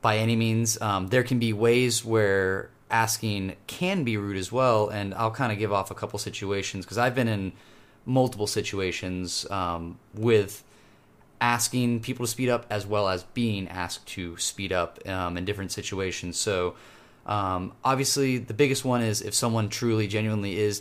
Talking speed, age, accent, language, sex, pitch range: 175 wpm, 30-49, American, English, male, 100-115 Hz